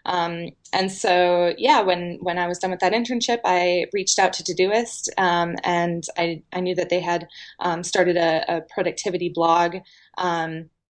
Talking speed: 175 wpm